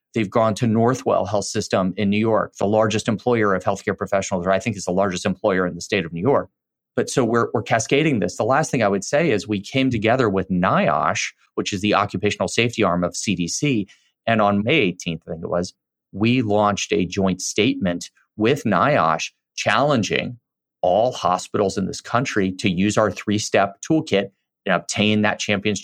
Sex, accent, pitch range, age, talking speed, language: male, American, 100-135 Hz, 30-49, 195 wpm, English